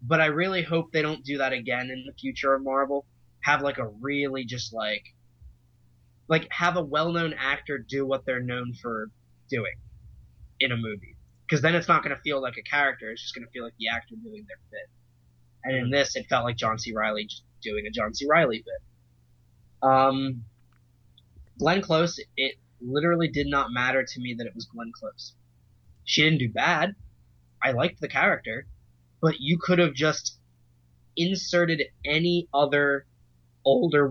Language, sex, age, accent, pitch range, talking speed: English, male, 20-39, American, 110-140 Hz, 185 wpm